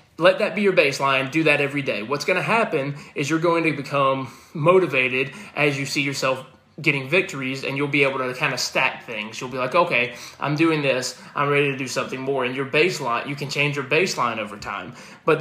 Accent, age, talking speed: American, 20-39, 225 wpm